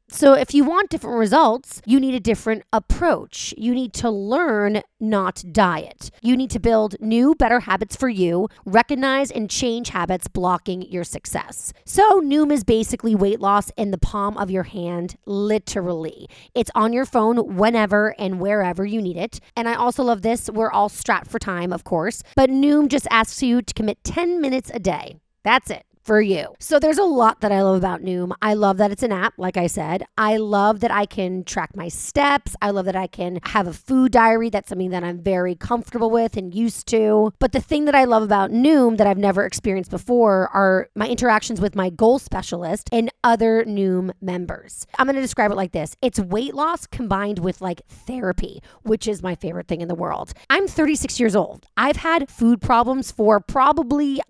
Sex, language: female, English